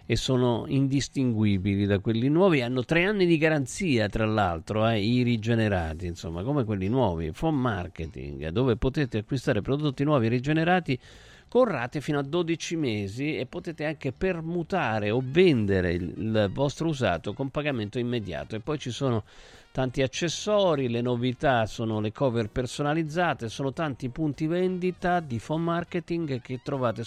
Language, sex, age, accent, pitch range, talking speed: Italian, male, 50-69, native, 110-160 Hz, 150 wpm